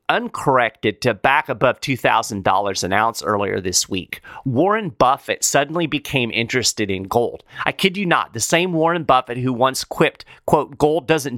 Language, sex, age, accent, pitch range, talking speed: English, male, 40-59, American, 120-175 Hz, 165 wpm